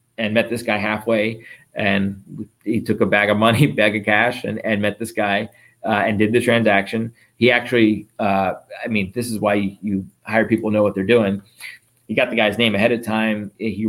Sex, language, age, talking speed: male, English, 30-49, 220 wpm